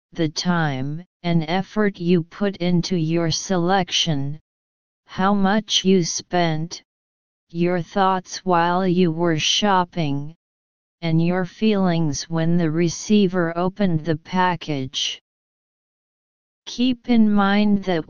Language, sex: English, female